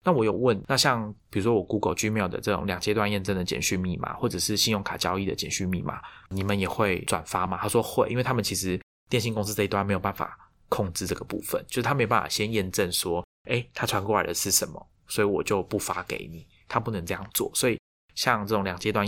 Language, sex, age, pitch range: Chinese, male, 20-39, 95-110 Hz